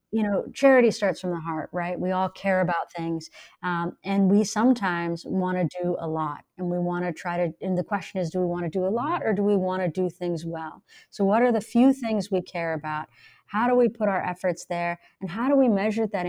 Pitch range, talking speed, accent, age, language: 170-195 Hz, 255 wpm, American, 30-49, English